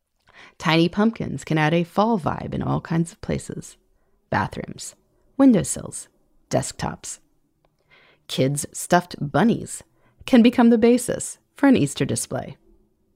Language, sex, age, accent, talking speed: English, female, 30-49, American, 120 wpm